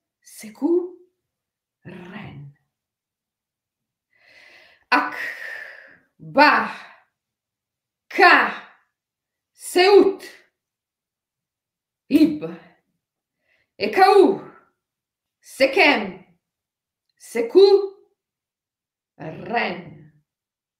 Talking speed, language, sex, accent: 40 wpm, Italian, female, native